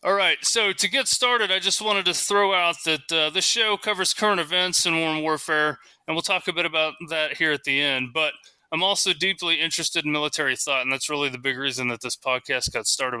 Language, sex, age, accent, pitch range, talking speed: English, male, 20-39, American, 130-165 Hz, 240 wpm